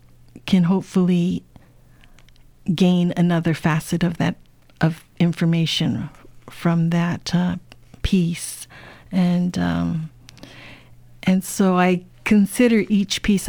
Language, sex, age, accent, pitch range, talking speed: English, female, 50-69, American, 160-185 Hz, 95 wpm